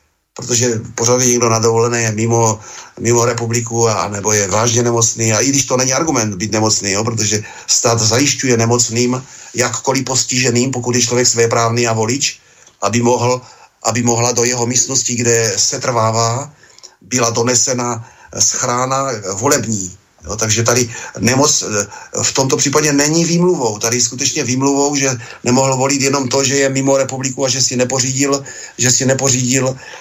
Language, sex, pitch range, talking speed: Slovak, male, 115-140 Hz, 145 wpm